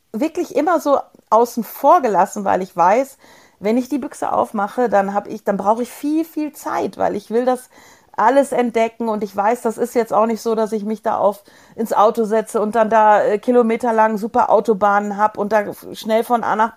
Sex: female